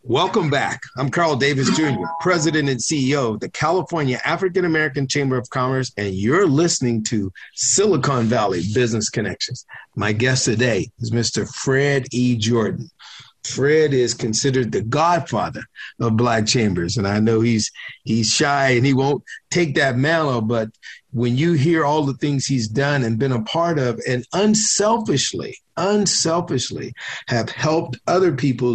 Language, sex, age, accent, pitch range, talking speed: English, male, 50-69, American, 115-145 Hz, 150 wpm